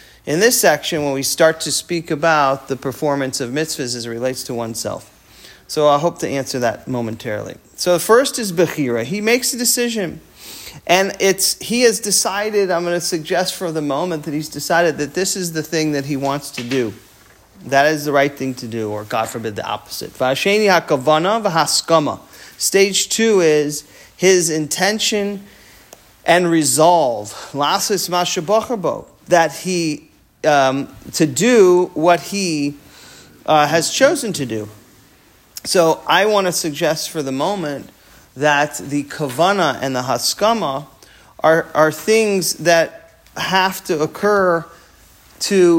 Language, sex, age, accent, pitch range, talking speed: English, male, 40-59, American, 140-190 Hz, 145 wpm